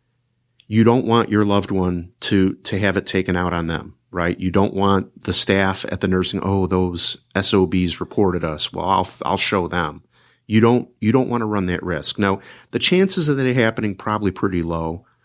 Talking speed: 200 wpm